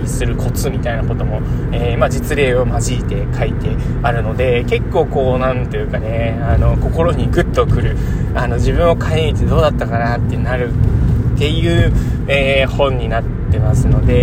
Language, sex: Japanese, male